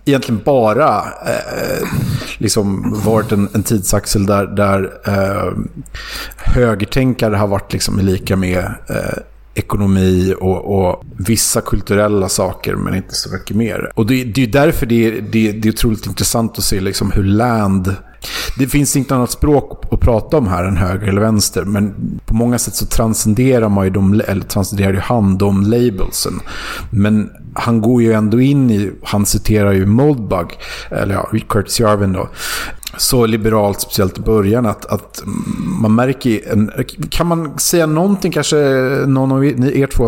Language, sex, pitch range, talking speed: English, male, 100-120 Hz, 150 wpm